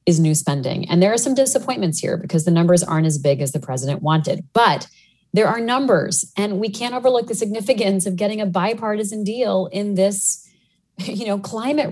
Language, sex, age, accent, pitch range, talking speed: English, female, 30-49, American, 155-195 Hz, 195 wpm